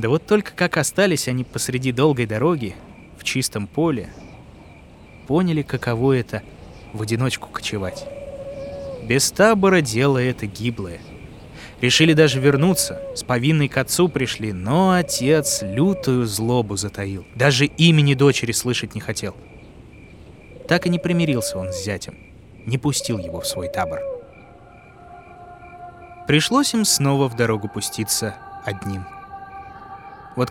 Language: Russian